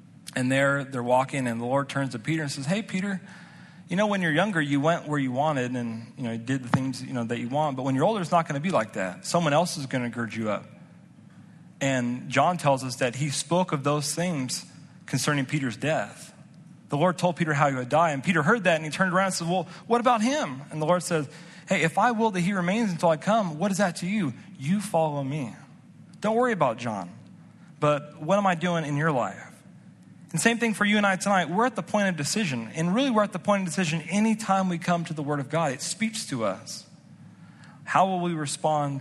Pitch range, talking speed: 140-185 Hz, 245 wpm